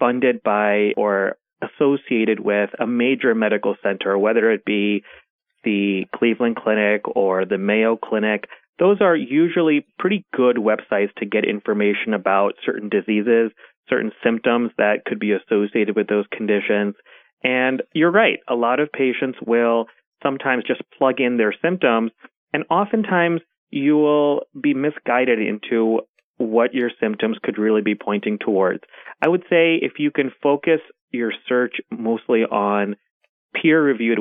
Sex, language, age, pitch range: male, English, 30-49, 105-135 Hz